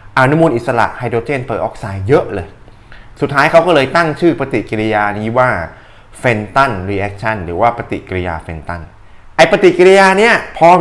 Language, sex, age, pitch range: Thai, male, 20-39, 105-145 Hz